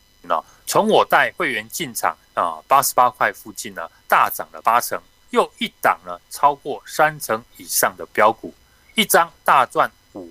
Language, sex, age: Chinese, male, 30-49